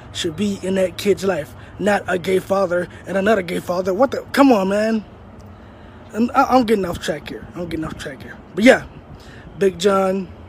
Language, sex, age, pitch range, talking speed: English, male, 20-39, 155-185 Hz, 200 wpm